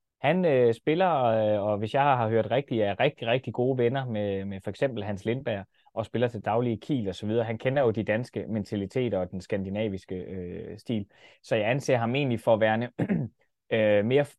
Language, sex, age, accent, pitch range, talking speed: Danish, male, 20-39, native, 105-125 Hz, 205 wpm